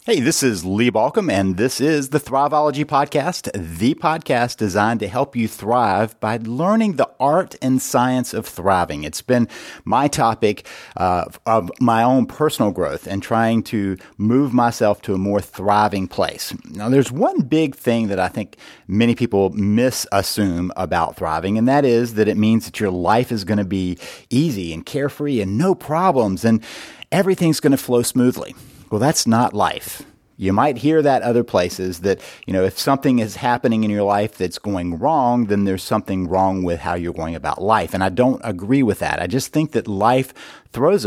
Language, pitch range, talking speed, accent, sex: English, 100-130 Hz, 190 wpm, American, male